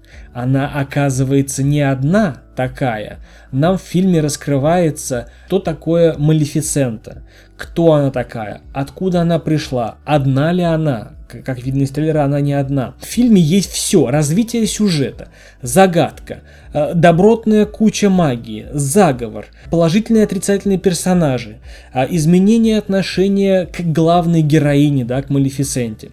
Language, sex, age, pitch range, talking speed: Russian, male, 20-39, 140-180 Hz, 115 wpm